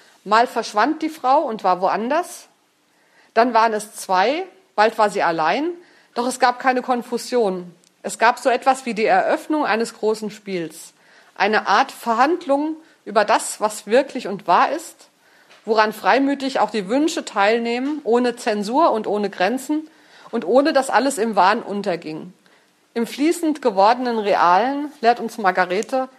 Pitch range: 210-265 Hz